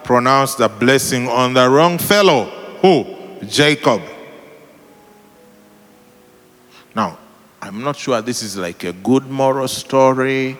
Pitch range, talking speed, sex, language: 115-150 Hz, 115 wpm, male, English